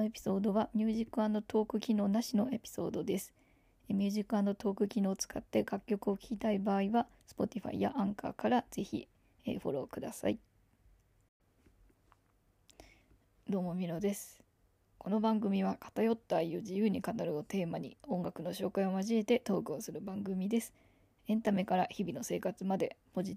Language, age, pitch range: Japanese, 20-39, 180-215 Hz